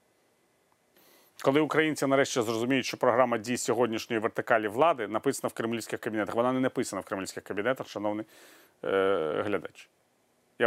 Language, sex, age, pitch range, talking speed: Ukrainian, male, 30-49, 105-125 Hz, 135 wpm